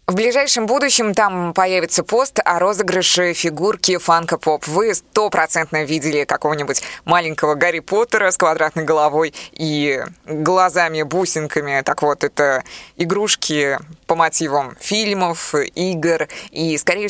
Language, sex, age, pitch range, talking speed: Russian, female, 20-39, 155-190 Hz, 110 wpm